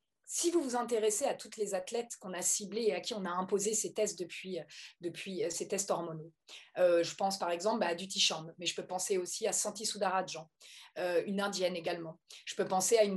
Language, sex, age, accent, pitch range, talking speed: French, female, 30-49, French, 195-255 Hz, 220 wpm